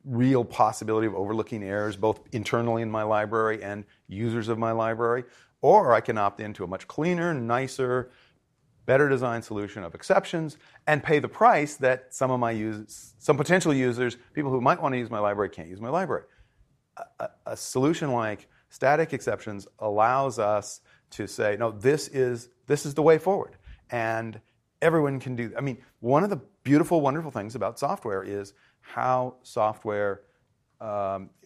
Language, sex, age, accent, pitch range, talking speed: English, male, 40-59, American, 110-145 Hz, 170 wpm